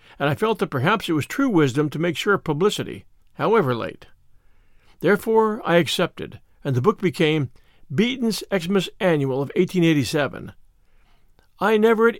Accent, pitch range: American, 145-200 Hz